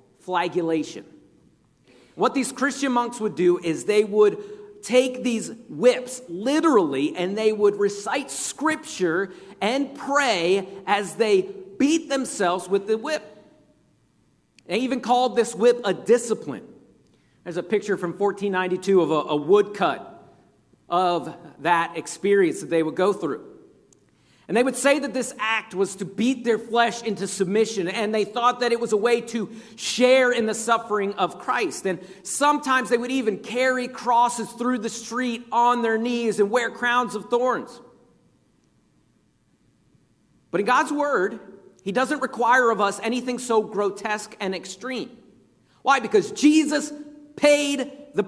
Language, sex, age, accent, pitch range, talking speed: English, male, 50-69, American, 200-265 Hz, 145 wpm